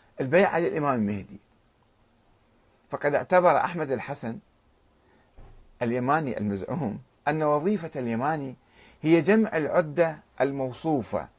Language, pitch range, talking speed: Arabic, 125-185 Hz, 85 wpm